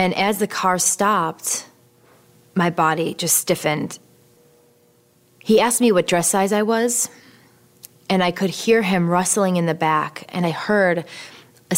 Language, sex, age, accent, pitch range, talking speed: English, female, 30-49, American, 165-190 Hz, 155 wpm